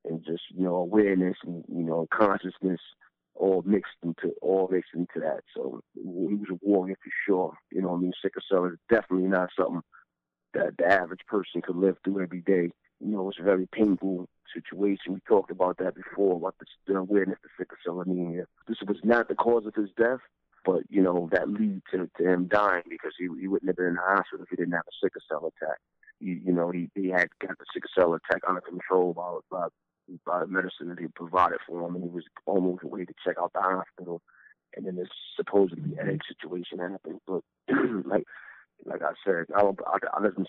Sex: male